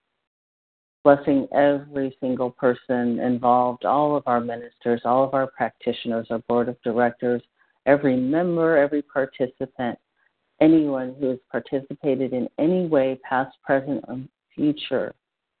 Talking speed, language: 125 wpm, English